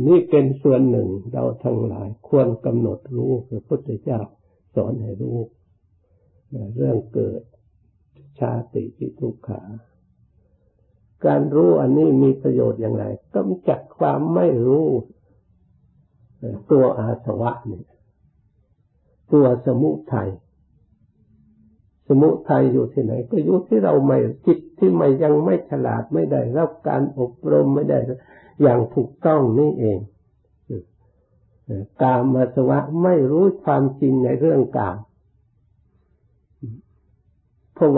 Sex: male